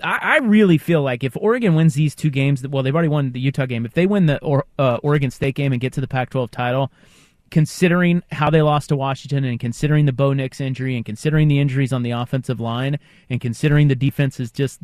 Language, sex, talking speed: English, male, 225 wpm